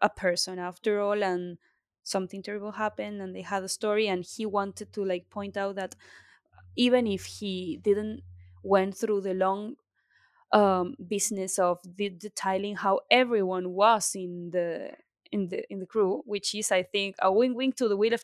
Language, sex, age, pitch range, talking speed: English, female, 20-39, 185-225 Hz, 175 wpm